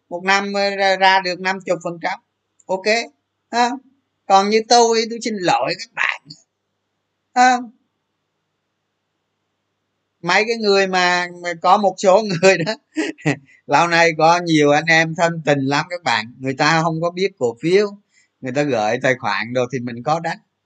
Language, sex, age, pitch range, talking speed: Vietnamese, male, 20-39, 155-220 Hz, 155 wpm